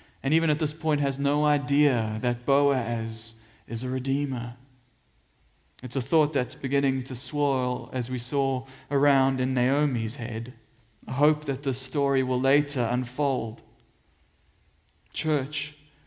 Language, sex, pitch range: English, male, 130-155 Hz